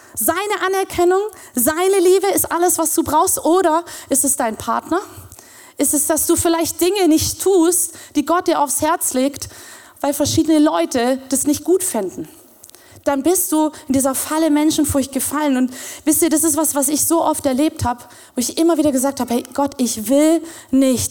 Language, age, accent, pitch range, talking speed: German, 30-49, German, 260-325 Hz, 190 wpm